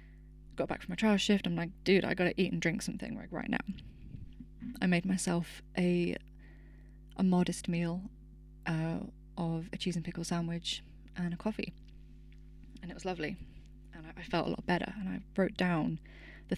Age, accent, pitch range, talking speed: 20-39, British, 165-205 Hz, 180 wpm